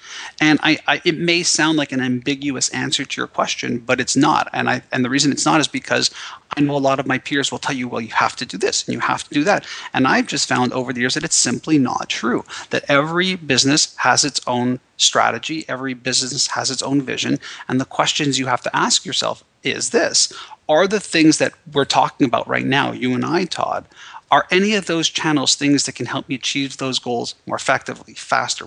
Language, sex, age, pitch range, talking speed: English, male, 30-49, 130-160 Hz, 225 wpm